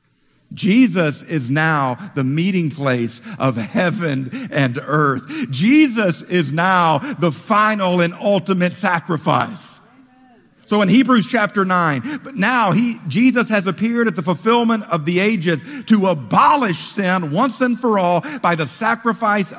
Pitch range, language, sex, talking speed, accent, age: 180-265 Hz, English, male, 140 wpm, American, 50-69